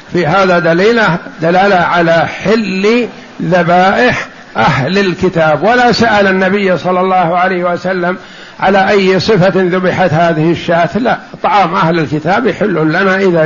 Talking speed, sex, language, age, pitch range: 130 wpm, male, Arabic, 60-79, 170-200 Hz